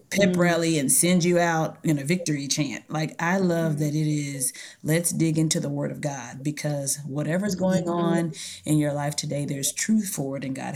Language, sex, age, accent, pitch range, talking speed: English, female, 30-49, American, 150-170 Hz, 205 wpm